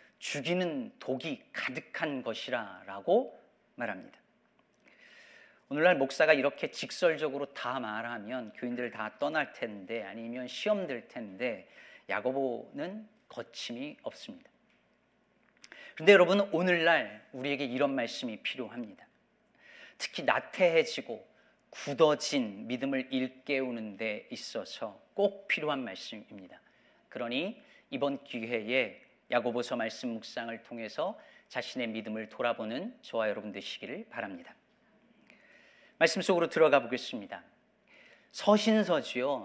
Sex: male